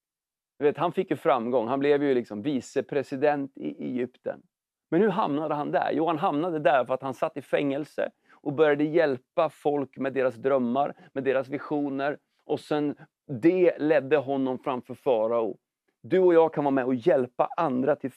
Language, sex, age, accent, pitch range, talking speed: English, male, 40-59, Swedish, 140-185 Hz, 175 wpm